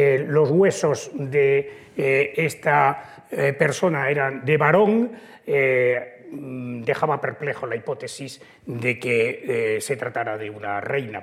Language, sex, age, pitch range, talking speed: Spanish, male, 40-59, 150-200 Hz, 130 wpm